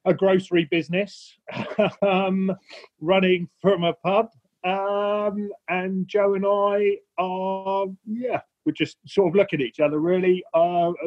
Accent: British